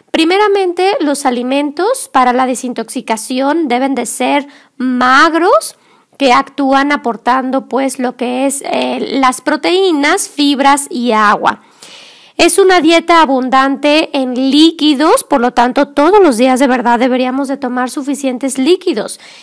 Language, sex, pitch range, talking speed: Spanish, female, 255-320 Hz, 130 wpm